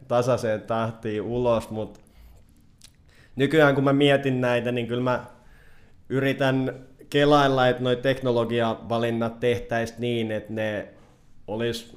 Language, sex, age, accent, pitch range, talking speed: Finnish, male, 20-39, native, 105-120 Hz, 110 wpm